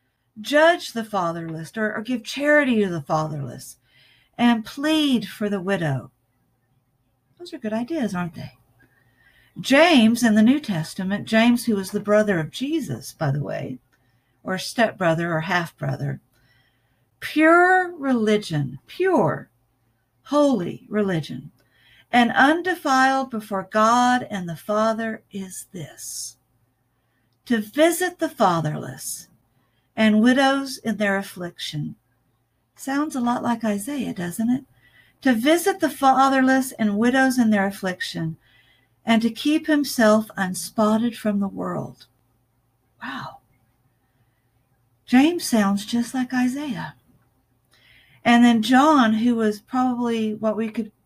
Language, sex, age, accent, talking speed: English, female, 50-69, American, 120 wpm